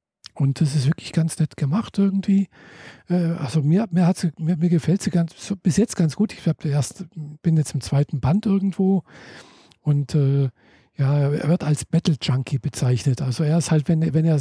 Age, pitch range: 50-69, 140-175 Hz